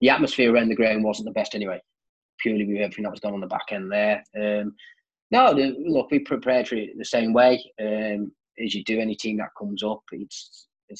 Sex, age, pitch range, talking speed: male, 20-39, 100-120 Hz, 215 wpm